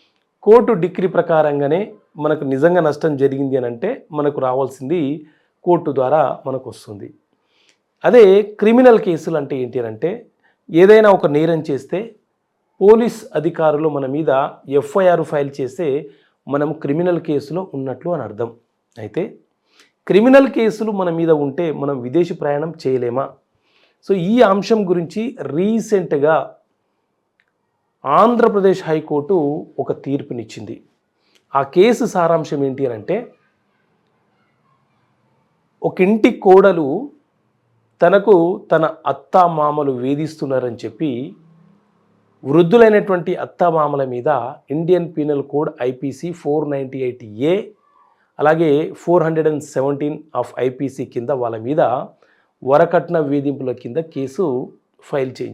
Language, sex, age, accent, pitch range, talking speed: English, male, 40-59, Indian, 140-185 Hz, 85 wpm